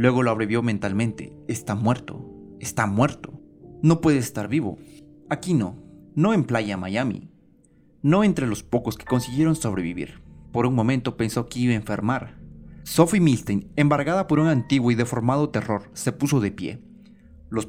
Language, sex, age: Spanish, male, 30-49